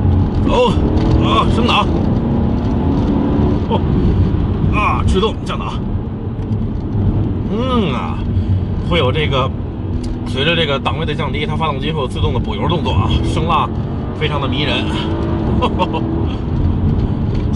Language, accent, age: Chinese, native, 30-49